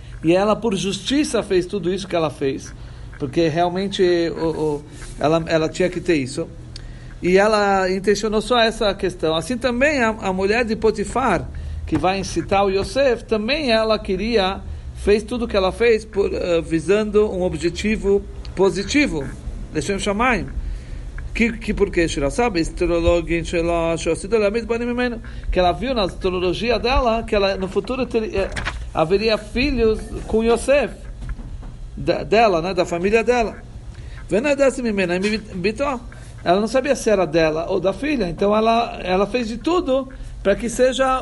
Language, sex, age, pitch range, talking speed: Portuguese, male, 50-69, 175-230 Hz, 140 wpm